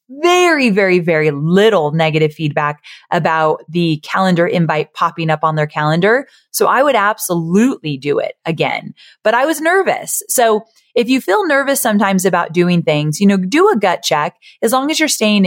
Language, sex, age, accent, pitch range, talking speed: English, female, 30-49, American, 170-240 Hz, 180 wpm